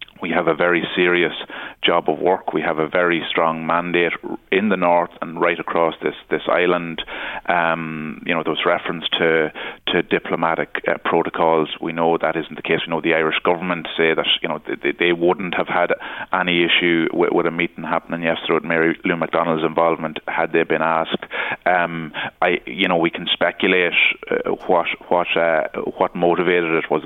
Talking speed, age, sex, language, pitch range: 190 wpm, 30-49, male, English, 80-85 Hz